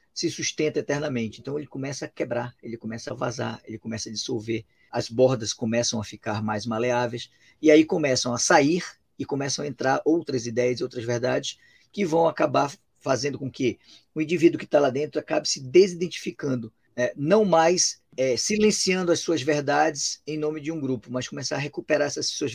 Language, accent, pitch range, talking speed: Portuguese, Brazilian, 120-160 Hz, 185 wpm